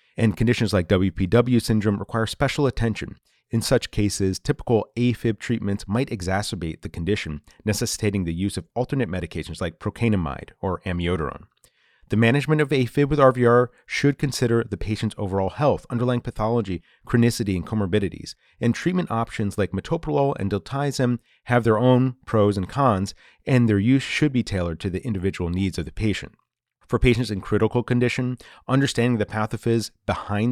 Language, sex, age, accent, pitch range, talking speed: English, male, 30-49, American, 95-125 Hz, 155 wpm